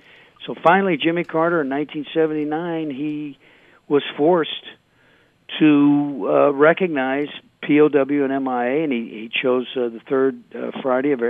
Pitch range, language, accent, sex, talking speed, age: 125-155 Hz, English, American, male, 125 wpm, 50-69